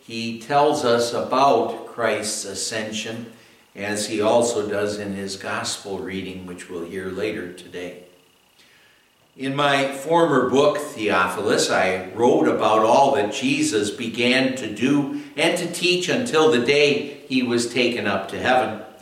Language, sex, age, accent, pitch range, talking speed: English, male, 60-79, American, 115-160 Hz, 140 wpm